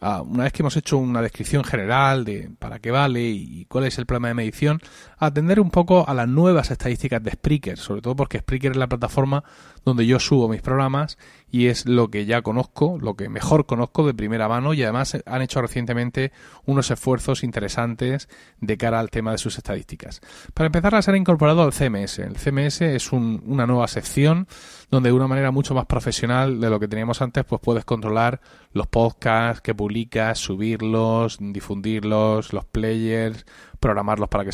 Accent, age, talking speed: Spanish, 30-49, 190 wpm